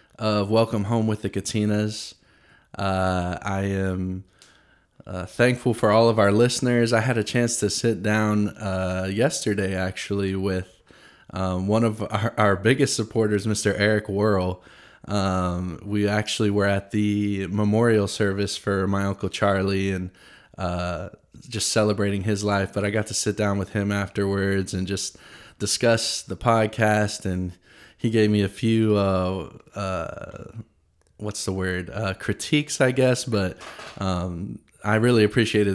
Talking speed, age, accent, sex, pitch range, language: 150 wpm, 20-39, American, male, 95-110 Hz, English